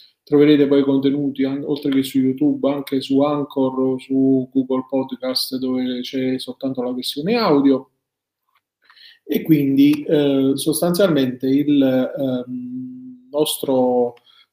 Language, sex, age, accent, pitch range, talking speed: Italian, male, 30-49, native, 135-160 Hz, 110 wpm